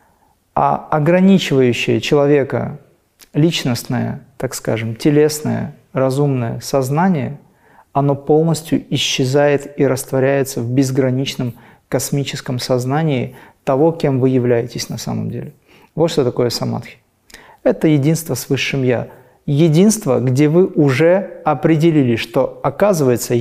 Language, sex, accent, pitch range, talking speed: Russian, male, native, 125-150 Hz, 105 wpm